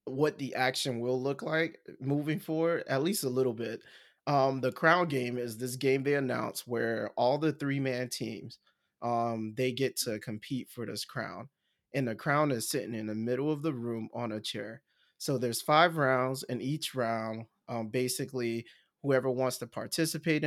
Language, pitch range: English, 115-140 Hz